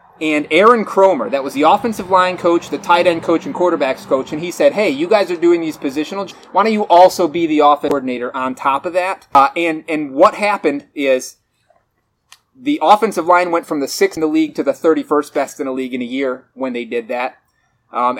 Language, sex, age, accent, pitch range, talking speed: English, male, 20-39, American, 140-175 Hz, 230 wpm